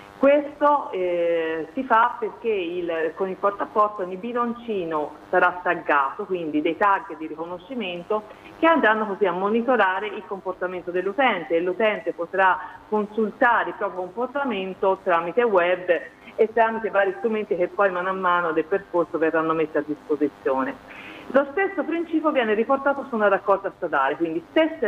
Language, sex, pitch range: Italian, female, 180-245 Hz